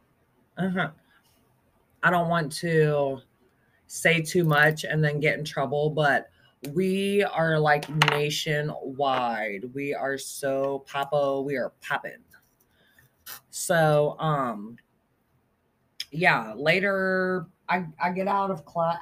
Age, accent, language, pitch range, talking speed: 20-39, American, English, 135-165 Hz, 115 wpm